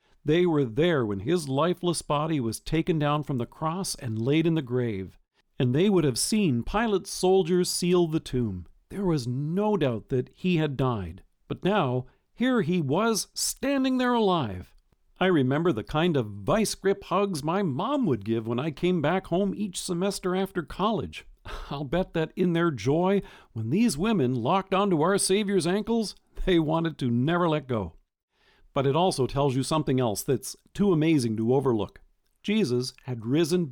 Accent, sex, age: American, male, 50-69